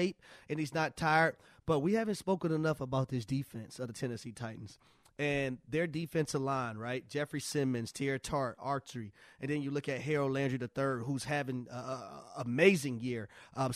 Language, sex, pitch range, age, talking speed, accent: English, male, 135-175 Hz, 30-49, 175 wpm, American